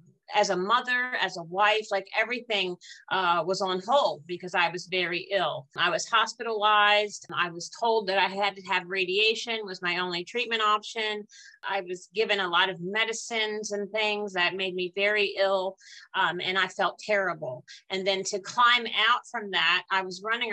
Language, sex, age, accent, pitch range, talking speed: English, female, 40-59, American, 185-225 Hz, 185 wpm